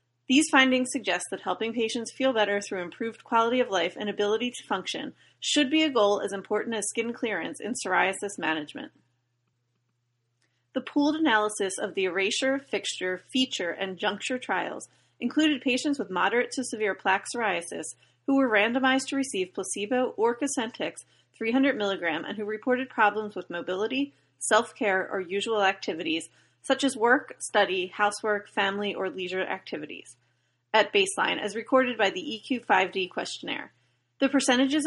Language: English